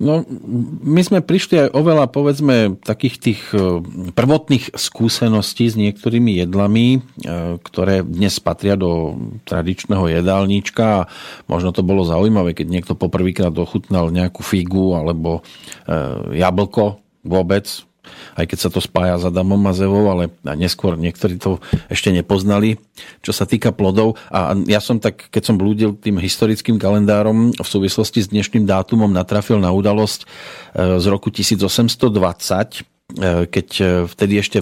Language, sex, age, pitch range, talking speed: Slovak, male, 40-59, 95-115 Hz, 135 wpm